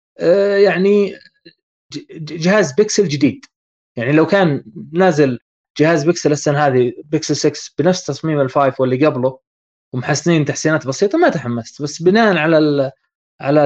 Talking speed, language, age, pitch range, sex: 125 wpm, Arabic, 20-39, 135-180 Hz, male